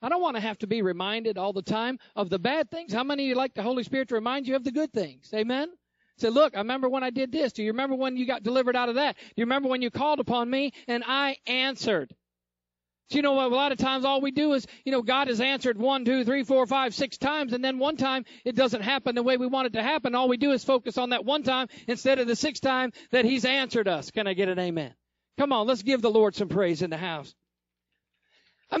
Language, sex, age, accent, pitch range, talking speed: English, male, 50-69, American, 235-290 Hz, 275 wpm